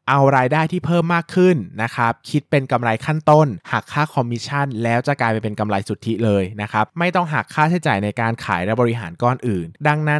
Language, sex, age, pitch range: Thai, male, 20-39, 110-150 Hz